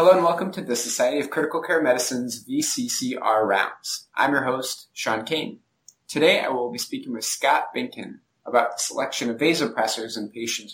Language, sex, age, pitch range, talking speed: English, male, 20-39, 110-155 Hz, 180 wpm